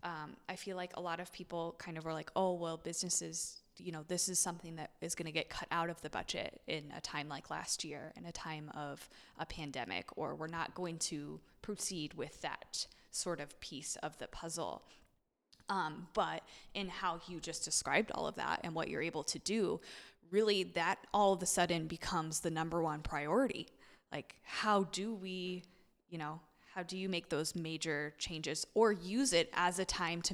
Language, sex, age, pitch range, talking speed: English, female, 20-39, 160-185 Hz, 205 wpm